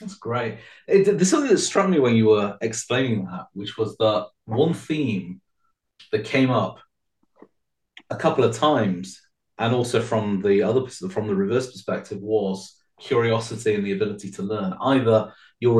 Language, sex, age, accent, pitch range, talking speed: English, male, 30-49, British, 105-150 Hz, 165 wpm